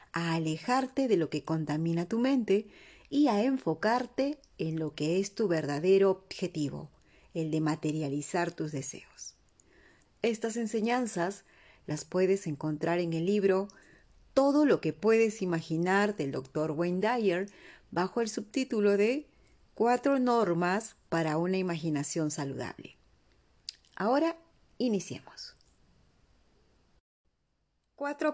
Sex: female